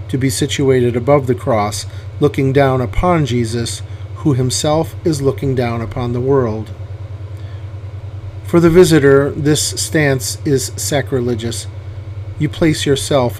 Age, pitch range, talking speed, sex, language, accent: 40-59, 105-145 Hz, 125 wpm, male, English, American